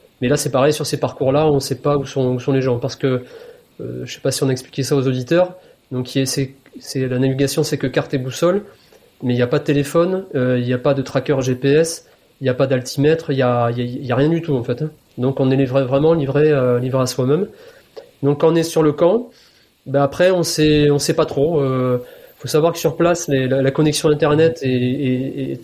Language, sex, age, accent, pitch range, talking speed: French, male, 30-49, French, 130-155 Hz, 265 wpm